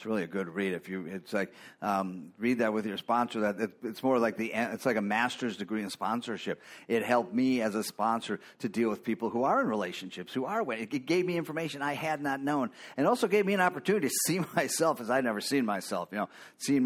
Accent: American